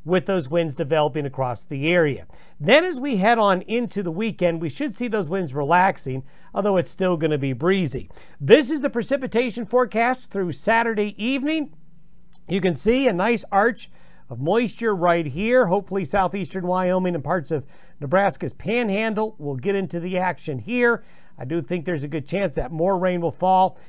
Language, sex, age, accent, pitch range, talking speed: English, male, 50-69, American, 160-205 Hz, 180 wpm